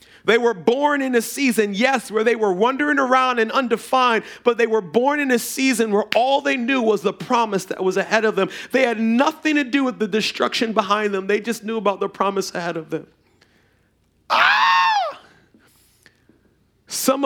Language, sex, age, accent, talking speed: English, male, 40-59, American, 190 wpm